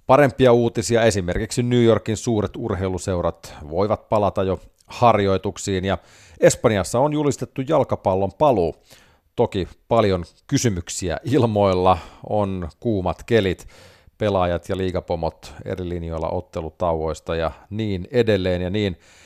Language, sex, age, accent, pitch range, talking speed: Finnish, male, 30-49, native, 95-120 Hz, 110 wpm